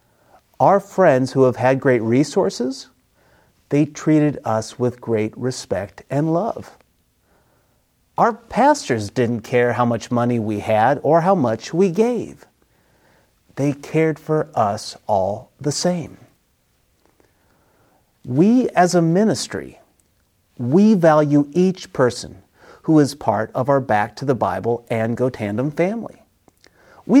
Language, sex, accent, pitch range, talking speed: English, male, American, 120-175 Hz, 130 wpm